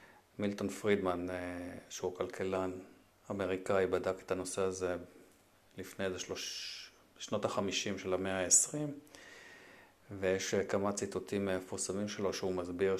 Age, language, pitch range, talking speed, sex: 40-59, Hebrew, 90-100 Hz, 100 wpm, male